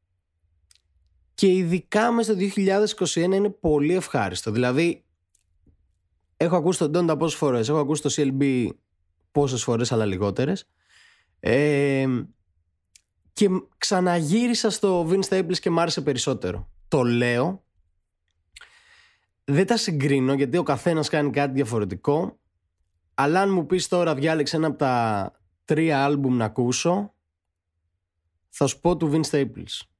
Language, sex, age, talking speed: Greek, male, 20-39, 125 wpm